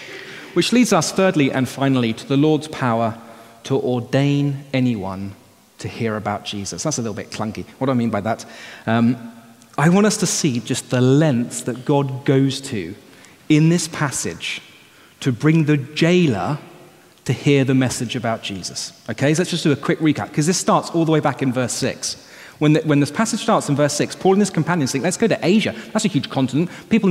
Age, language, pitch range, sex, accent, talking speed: 30-49, English, 130-190 Hz, male, British, 210 wpm